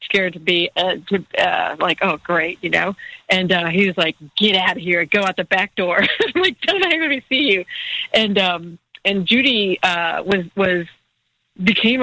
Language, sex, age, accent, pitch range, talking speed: English, female, 40-59, American, 165-200 Hz, 200 wpm